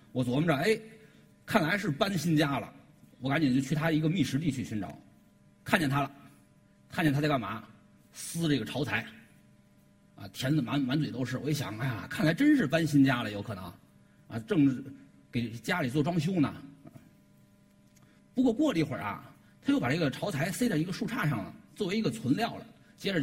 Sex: male